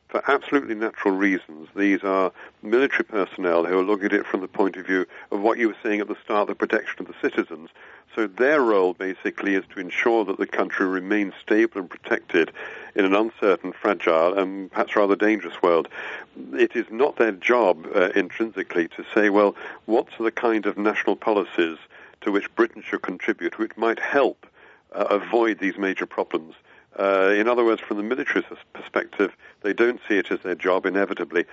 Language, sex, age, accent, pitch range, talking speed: English, male, 50-69, British, 95-115 Hz, 190 wpm